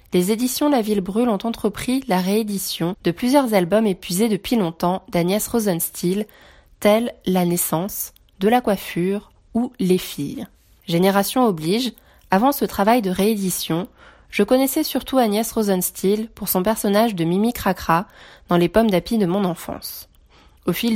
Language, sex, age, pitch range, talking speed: French, female, 20-39, 180-225 Hz, 150 wpm